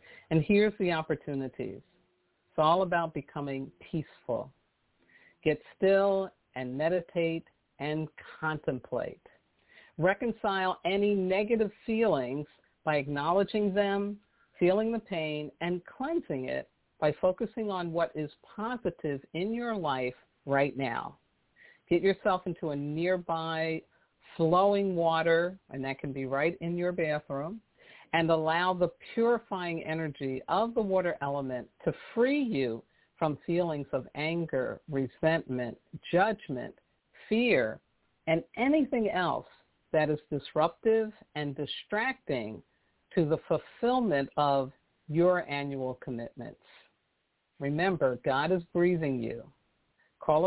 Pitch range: 145-195 Hz